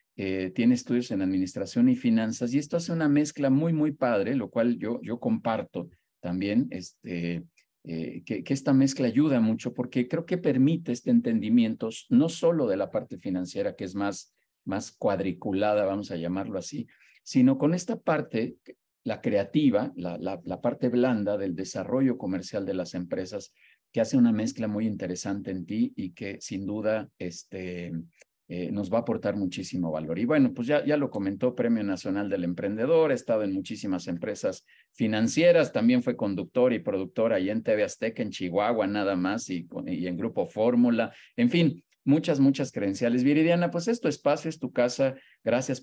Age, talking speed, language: 50-69, 175 wpm, Spanish